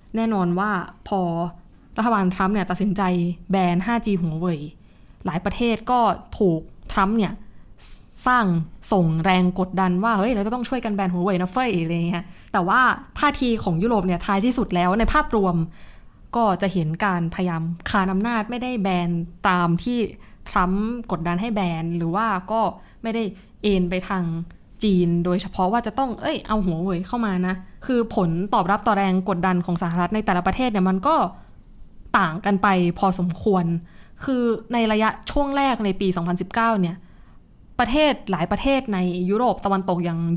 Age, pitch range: 20-39, 180-220 Hz